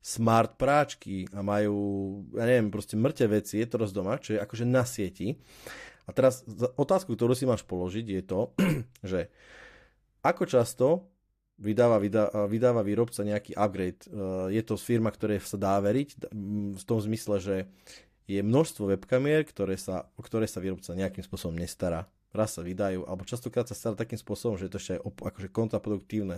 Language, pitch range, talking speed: Slovak, 100-120 Hz, 165 wpm